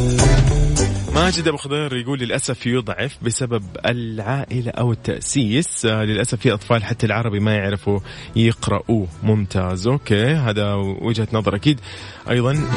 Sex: male